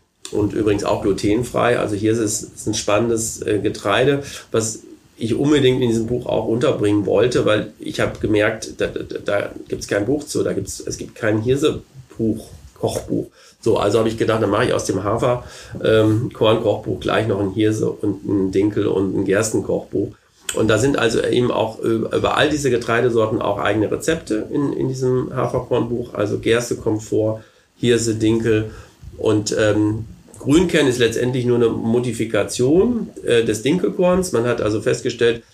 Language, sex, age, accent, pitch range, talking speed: German, male, 40-59, German, 105-120 Hz, 170 wpm